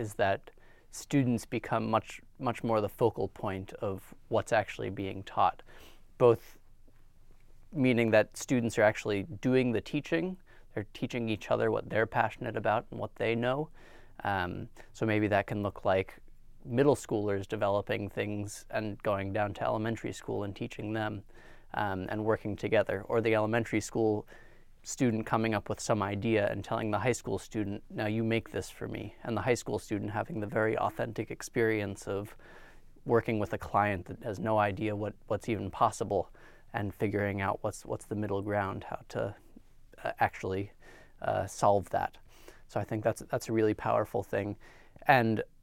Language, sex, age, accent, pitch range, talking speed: Danish, male, 30-49, American, 100-115 Hz, 170 wpm